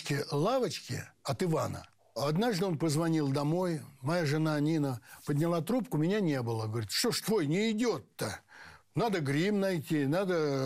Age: 60-79